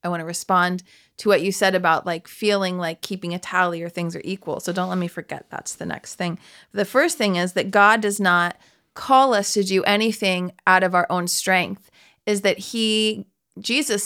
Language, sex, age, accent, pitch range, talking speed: English, female, 30-49, American, 190-245 Hz, 215 wpm